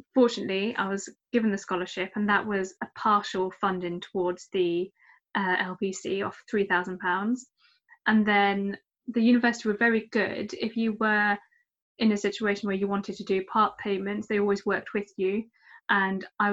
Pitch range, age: 190-215 Hz, 10-29